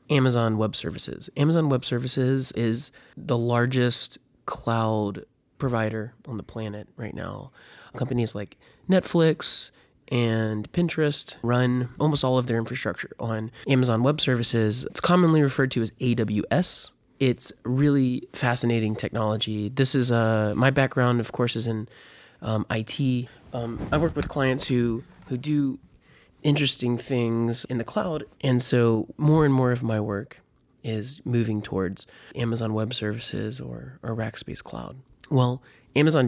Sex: male